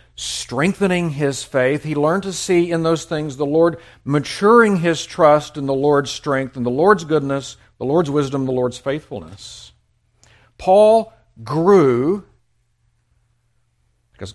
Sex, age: male, 60-79